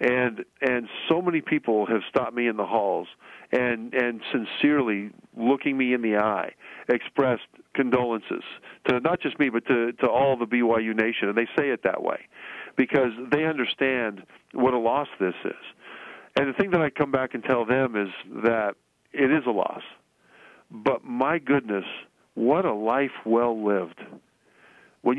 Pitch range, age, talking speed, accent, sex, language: 115-145 Hz, 50-69, 170 wpm, American, male, English